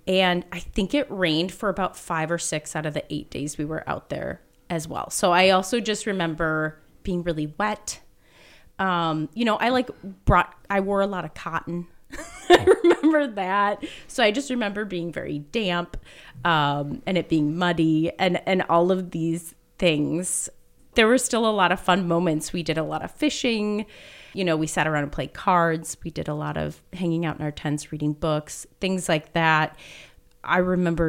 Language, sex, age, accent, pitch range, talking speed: English, female, 30-49, American, 155-210 Hz, 195 wpm